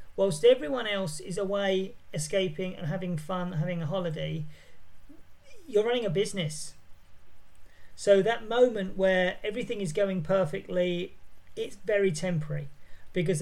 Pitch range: 165-205 Hz